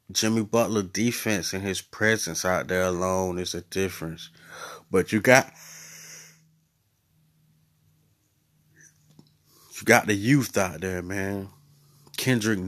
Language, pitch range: English, 95-125 Hz